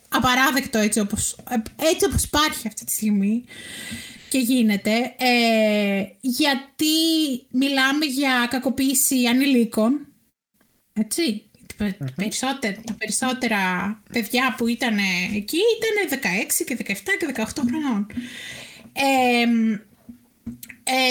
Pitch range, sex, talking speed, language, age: 220-285 Hz, female, 95 wpm, Greek, 20-39